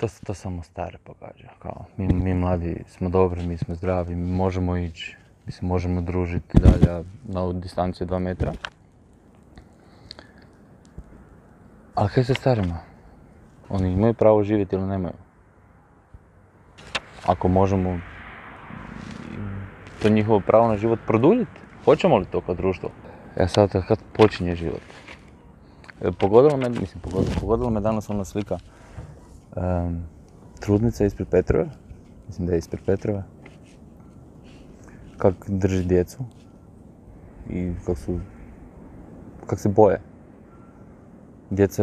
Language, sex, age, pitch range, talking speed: Croatian, male, 20-39, 90-105 Hz, 120 wpm